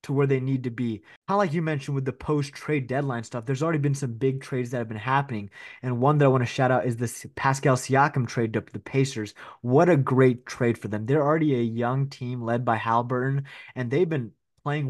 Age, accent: 20-39, American